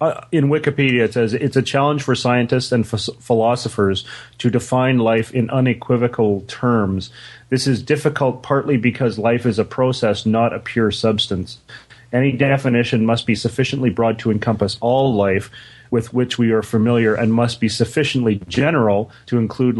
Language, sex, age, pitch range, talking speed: English, male, 30-49, 110-125 Hz, 160 wpm